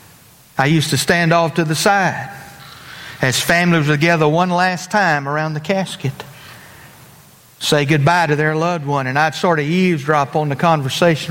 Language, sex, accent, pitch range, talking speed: English, male, American, 145-180 Hz, 170 wpm